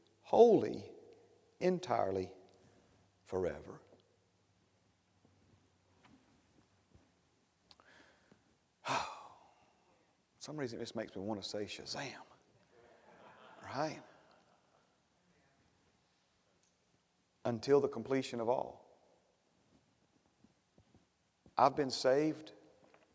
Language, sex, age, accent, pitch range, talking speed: English, male, 50-69, American, 95-120 Hz, 60 wpm